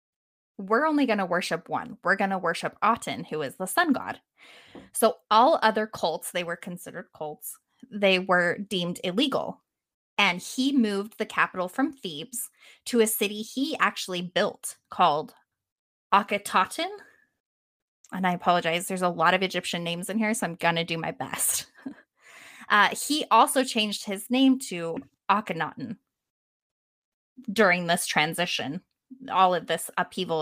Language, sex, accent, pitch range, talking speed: English, female, American, 175-225 Hz, 150 wpm